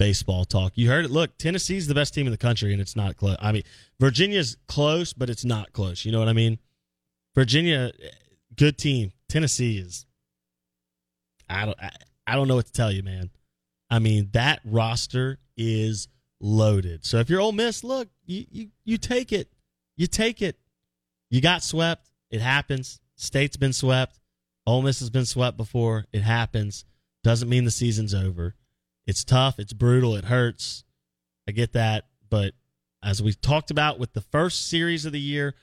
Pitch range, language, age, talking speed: 95-145 Hz, English, 30-49, 180 wpm